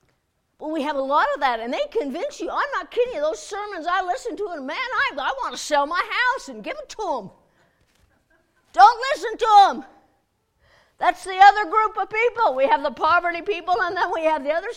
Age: 50-69